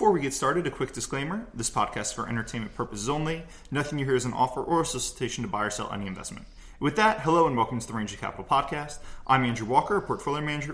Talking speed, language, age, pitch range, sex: 245 wpm, English, 20-39, 125-160 Hz, male